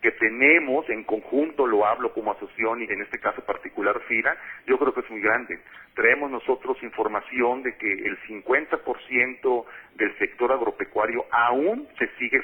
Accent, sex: Mexican, male